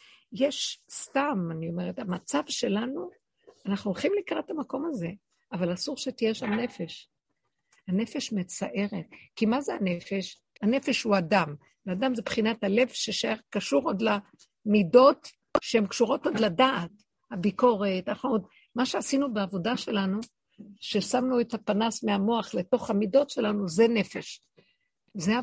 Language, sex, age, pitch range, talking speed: Hebrew, female, 50-69, 195-245 Hz, 125 wpm